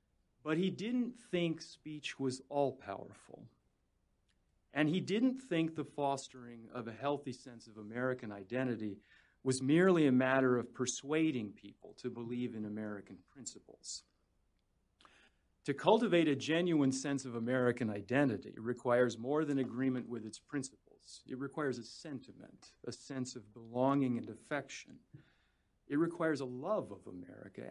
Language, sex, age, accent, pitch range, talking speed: English, male, 40-59, American, 110-140 Hz, 135 wpm